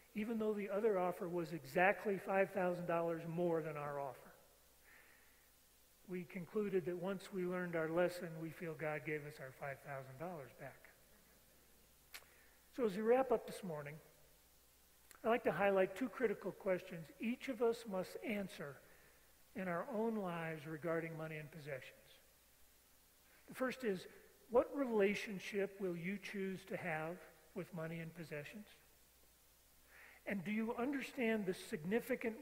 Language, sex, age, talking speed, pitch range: English, male, 40-59, 140 wpm, 160-210 Hz